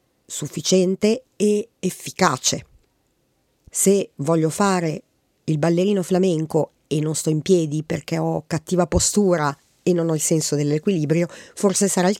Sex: female